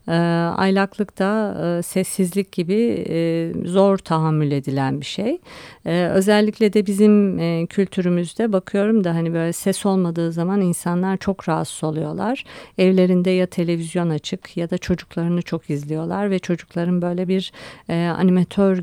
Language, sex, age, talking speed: Turkish, female, 50-69, 120 wpm